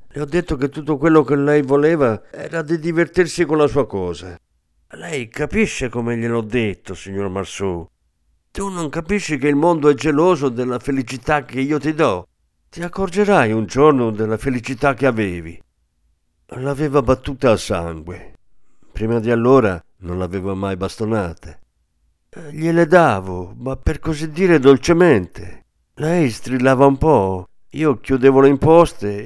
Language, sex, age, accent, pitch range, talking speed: Italian, male, 50-69, native, 95-145 Hz, 145 wpm